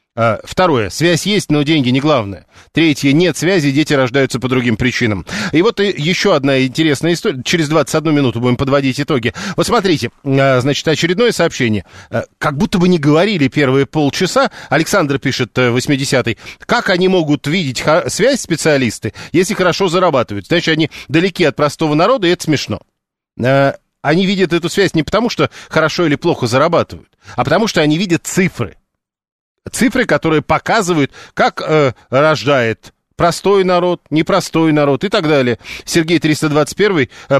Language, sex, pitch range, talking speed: Russian, male, 130-170 Hz, 150 wpm